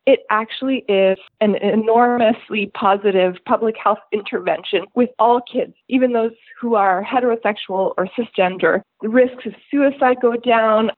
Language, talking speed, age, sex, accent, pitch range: English, 135 wpm, 20-39, female, American, 195-240 Hz